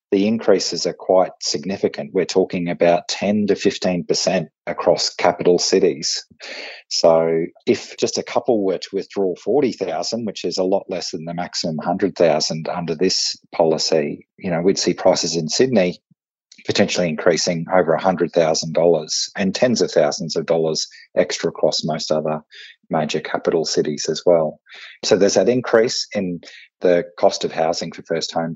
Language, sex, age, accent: English, male, 30-49, Australian